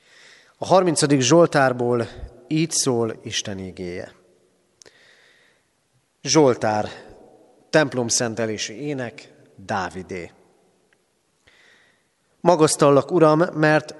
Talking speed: 60 wpm